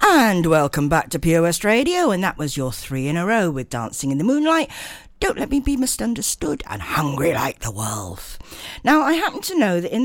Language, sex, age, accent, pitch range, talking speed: English, female, 60-79, British, 140-235 Hz, 215 wpm